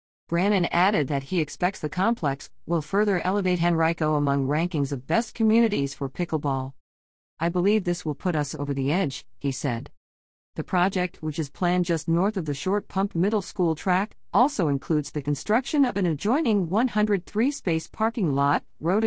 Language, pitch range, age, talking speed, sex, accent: English, 145-205 Hz, 50-69, 170 wpm, female, American